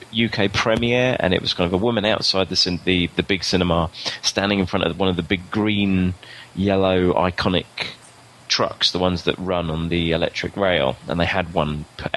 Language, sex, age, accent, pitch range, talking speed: English, male, 20-39, British, 90-110 Hz, 190 wpm